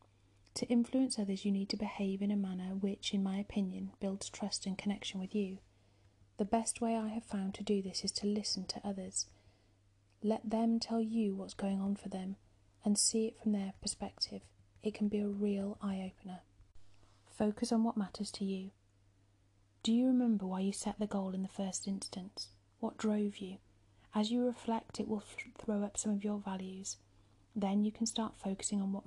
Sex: female